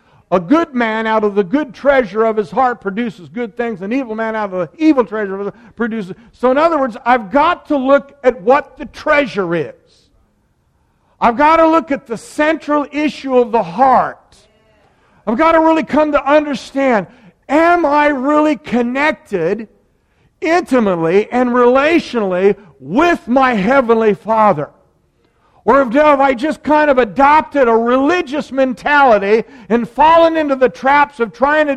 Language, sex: English, male